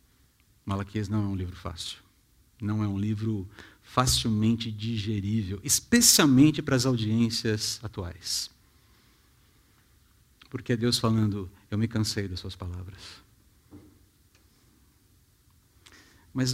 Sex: male